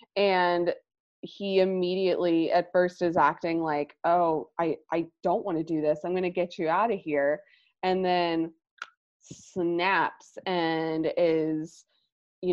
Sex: female